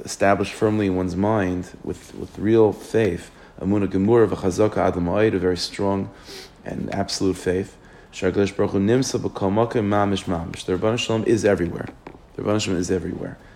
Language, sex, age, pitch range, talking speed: English, male, 30-49, 95-105 Hz, 105 wpm